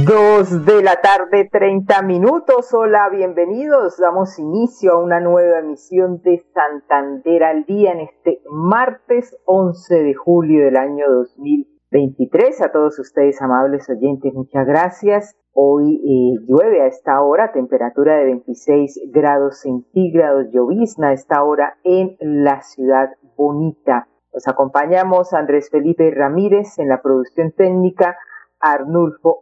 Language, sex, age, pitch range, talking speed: Spanish, female, 40-59, 135-185 Hz, 130 wpm